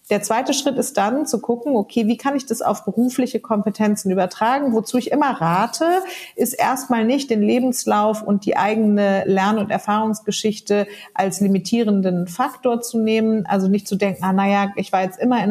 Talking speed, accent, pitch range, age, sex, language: 180 wpm, German, 195-235 Hz, 40-59, female, German